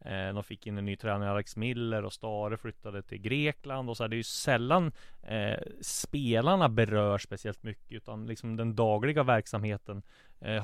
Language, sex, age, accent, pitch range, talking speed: Swedish, male, 20-39, native, 105-120 Hz, 180 wpm